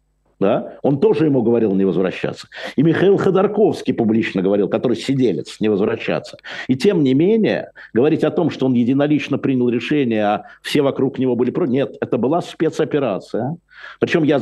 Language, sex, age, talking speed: Russian, male, 50-69, 160 wpm